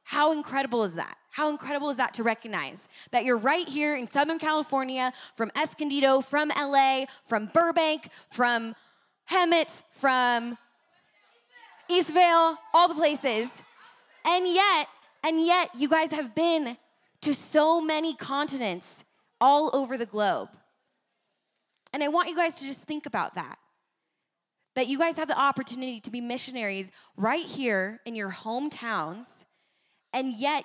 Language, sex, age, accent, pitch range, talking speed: English, female, 10-29, American, 215-290 Hz, 140 wpm